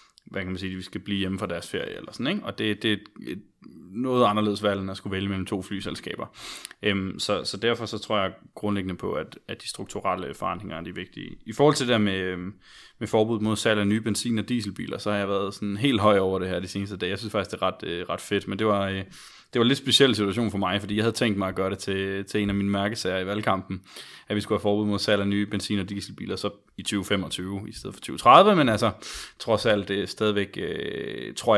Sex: male